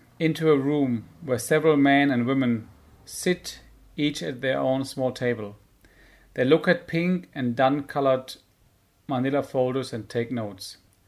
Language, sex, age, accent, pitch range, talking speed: English, male, 40-59, German, 115-140 Hz, 140 wpm